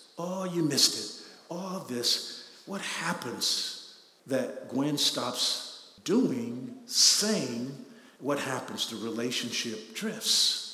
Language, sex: English, male